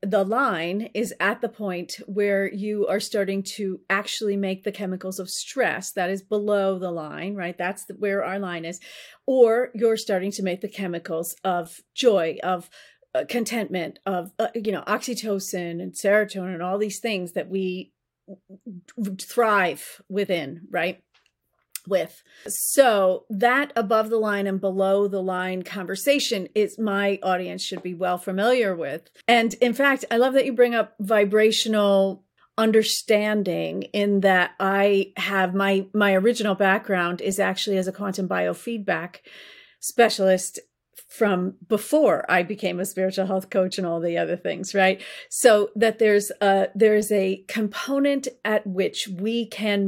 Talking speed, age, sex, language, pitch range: 155 wpm, 40-59, female, English, 185-215 Hz